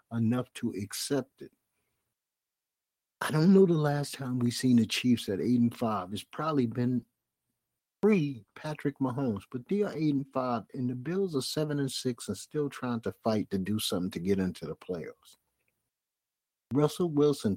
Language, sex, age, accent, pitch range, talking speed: English, male, 50-69, American, 115-140 Hz, 180 wpm